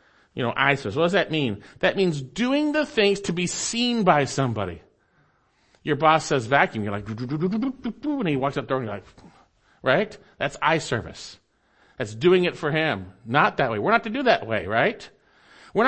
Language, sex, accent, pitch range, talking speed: English, male, American, 125-185 Hz, 200 wpm